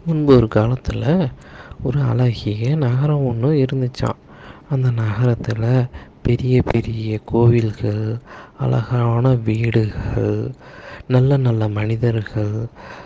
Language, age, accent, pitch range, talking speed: Tamil, 20-39, native, 115-135 Hz, 80 wpm